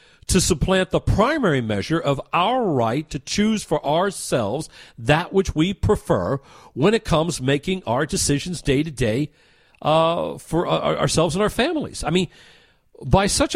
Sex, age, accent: male, 50-69, American